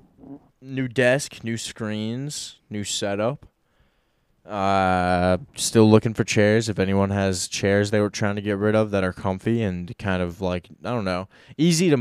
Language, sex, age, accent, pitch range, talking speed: English, male, 20-39, American, 100-130 Hz, 170 wpm